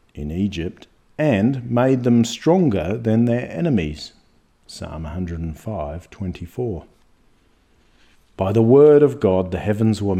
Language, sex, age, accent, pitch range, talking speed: English, male, 50-69, Australian, 90-120 Hz, 120 wpm